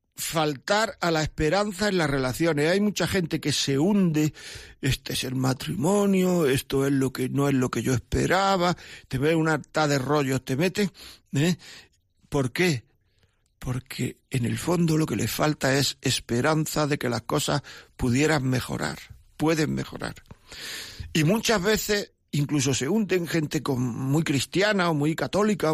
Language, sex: Spanish, male